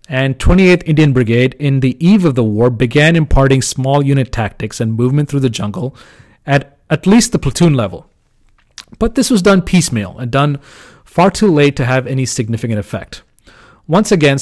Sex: male